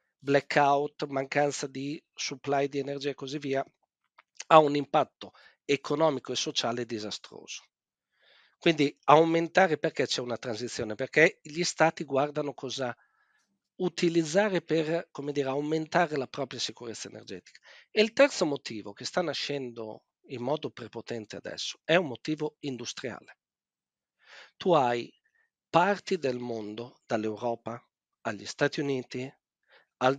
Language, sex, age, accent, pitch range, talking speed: Italian, male, 50-69, native, 125-175 Hz, 115 wpm